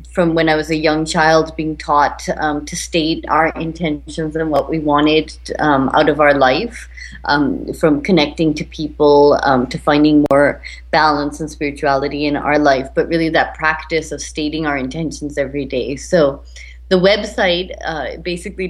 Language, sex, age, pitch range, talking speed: English, female, 30-49, 145-165 Hz, 170 wpm